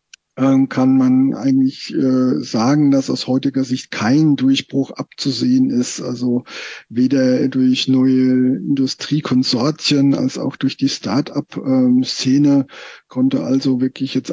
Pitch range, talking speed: 130-150 Hz, 115 wpm